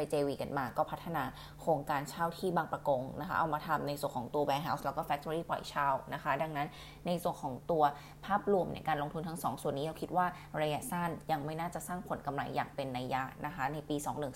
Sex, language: female, Thai